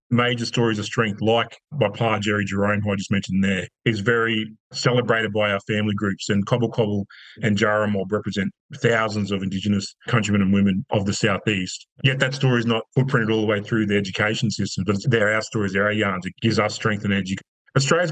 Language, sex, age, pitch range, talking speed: English, male, 30-49, 105-120 Hz, 210 wpm